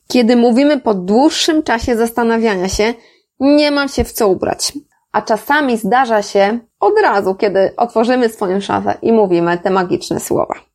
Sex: female